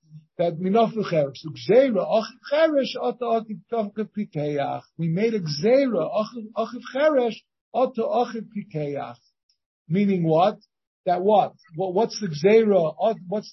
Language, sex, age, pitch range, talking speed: English, male, 50-69, 175-225 Hz, 125 wpm